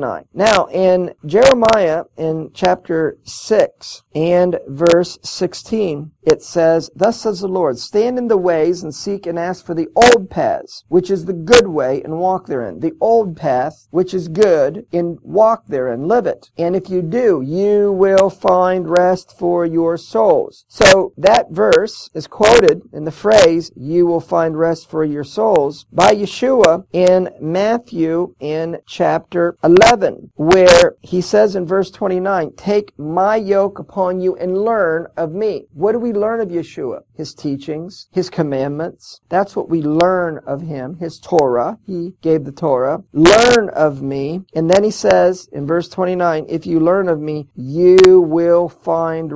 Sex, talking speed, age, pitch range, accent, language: male, 165 wpm, 50-69, 160-195 Hz, American, English